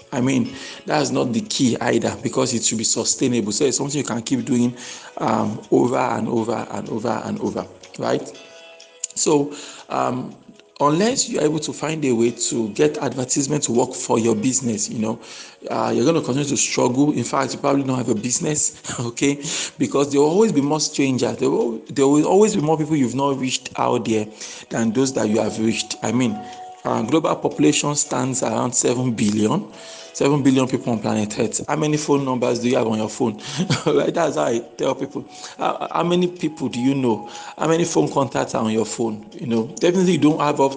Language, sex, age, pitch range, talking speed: English, male, 50-69, 115-150 Hz, 210 wpm